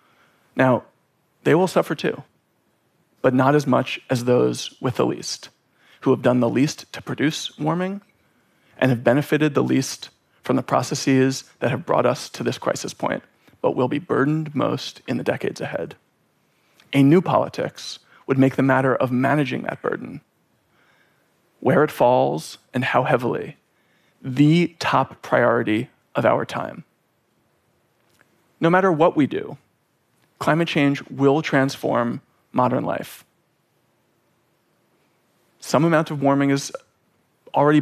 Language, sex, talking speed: Russian, male, 140 wpm